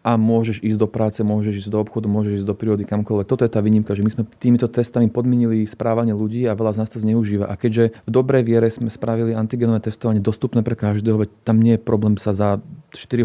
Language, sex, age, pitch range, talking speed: Slovak, male, 30-49, 105-115 Hz, 235 wpm